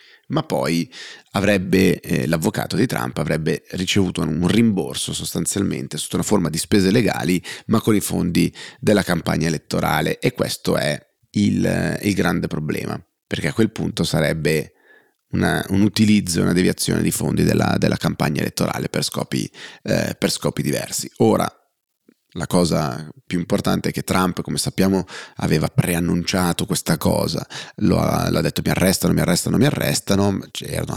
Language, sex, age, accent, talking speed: Italian, male, 30-49, native, 150 wpm